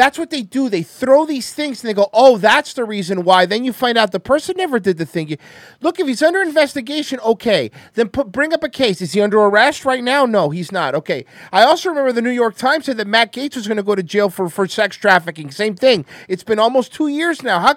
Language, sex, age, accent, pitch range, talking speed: English, male, 40-59, American, 180-255 Hz, 265 wpm